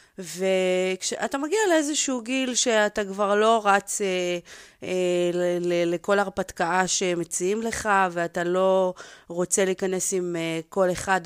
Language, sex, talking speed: Hebrew, female, 130 wpm